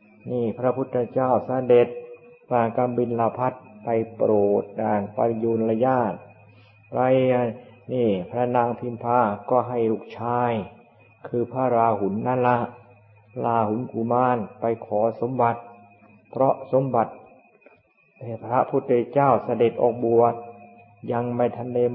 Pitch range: 110-125 Hz